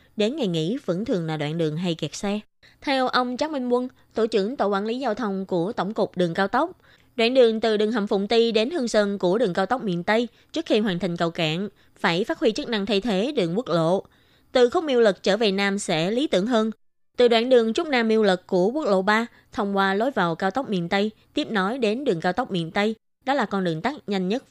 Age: 20-39